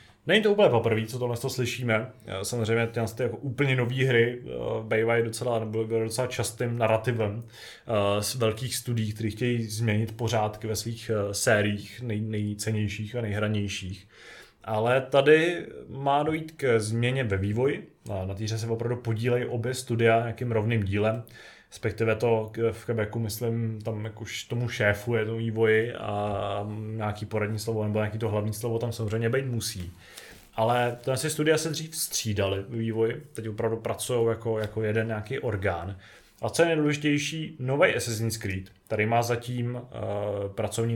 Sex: male